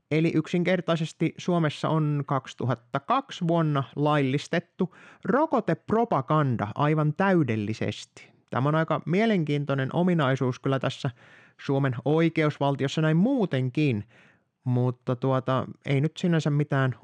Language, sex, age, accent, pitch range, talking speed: Finnish, male, 20-39, native, 125-165 Hz, 90 wpm